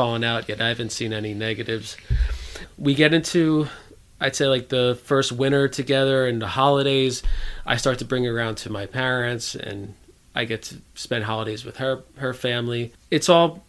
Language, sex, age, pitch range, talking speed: English, male, 20-39, 110-135 Hz, 180 wpm